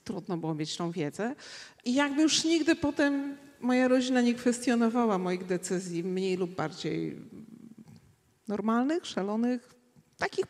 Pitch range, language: 195-265 Hz, Polish